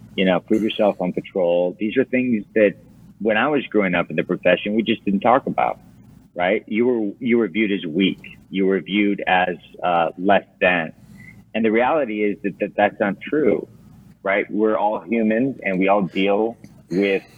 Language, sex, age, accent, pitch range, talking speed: English, male, 40-59, American, 90-105 Hz, 195 wpm